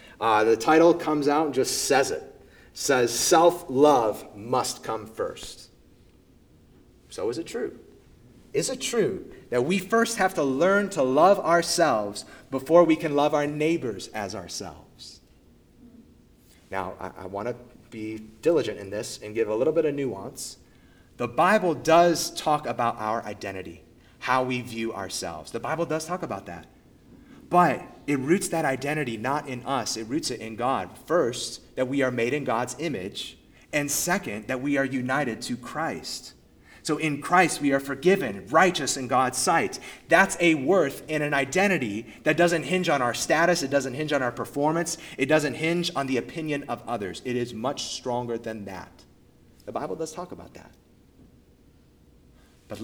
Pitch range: 120-170 Hz